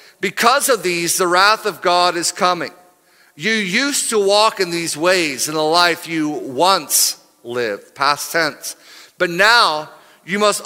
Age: 50-69